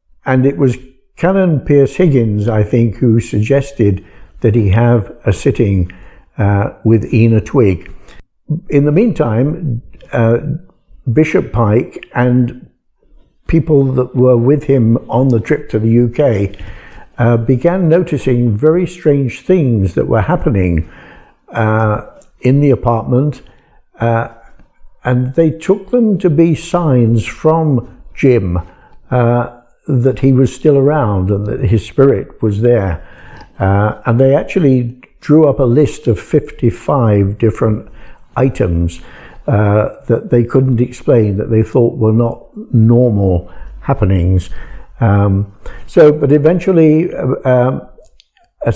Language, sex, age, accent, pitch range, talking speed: English, male, 60-79, British, 110-145 Hz, 125 wpm